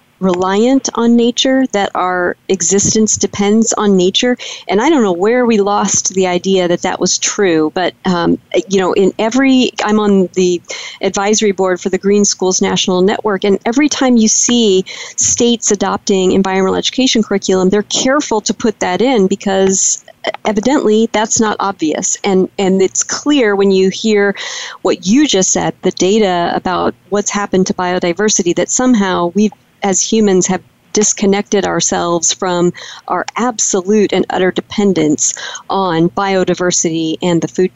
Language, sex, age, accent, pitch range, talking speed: English, female, 40-59, American, 185-225 Hz, 155 wpm